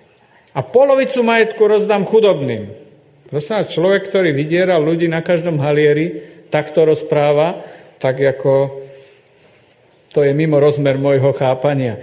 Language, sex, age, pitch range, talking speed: Slovak, male, 50-69, 140-210 Hz, 110 wpm